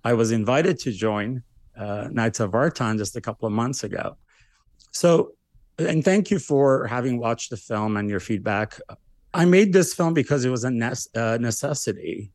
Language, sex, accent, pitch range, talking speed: English, male, American, 110-130 Hz, 185 wpm